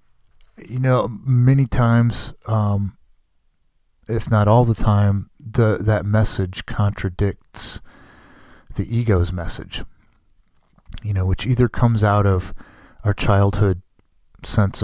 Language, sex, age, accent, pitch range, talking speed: English, male, 30-49, American, 90-105 Hz, 110 wpm